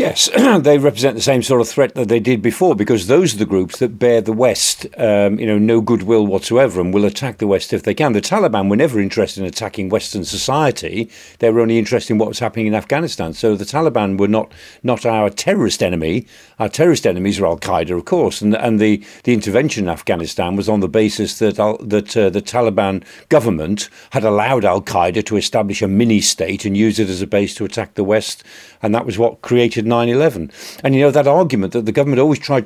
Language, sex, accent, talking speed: English, male, British, 230 wpm